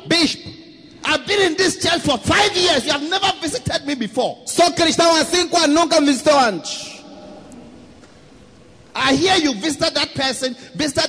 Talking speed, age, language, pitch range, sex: 125 wpm, 30-49, English, 220-315 Hz, male